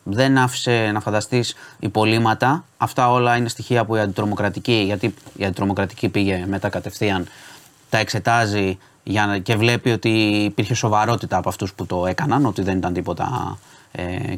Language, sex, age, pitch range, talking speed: Greek, male, 20-39, 105-125 Hz, 150 wpm